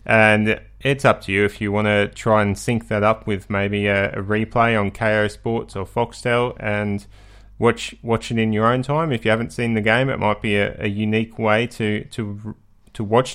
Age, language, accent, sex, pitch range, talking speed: 20-39, English, Australian, male, 110-140 Hz, 220 wpm